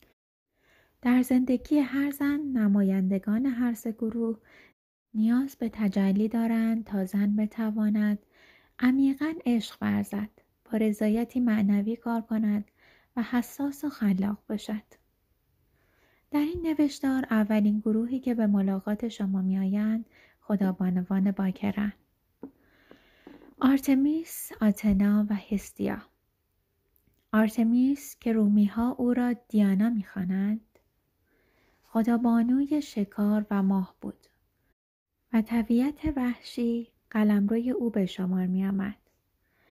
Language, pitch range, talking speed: Persian, 205-245 Hz, 100 wpm